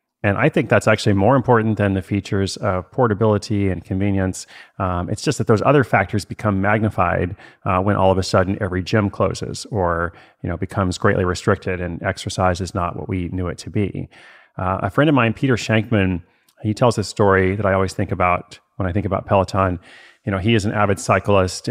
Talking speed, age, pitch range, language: 210 wpm, 30-49, 95-110 Hz, English